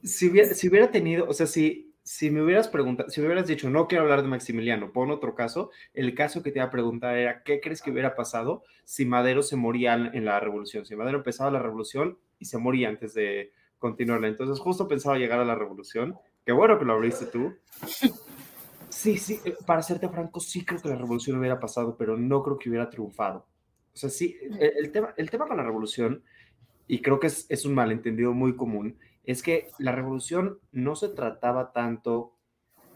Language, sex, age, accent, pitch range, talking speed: Spanish, male, 20-39, Mexican, 120-160 Hz, 210 wpm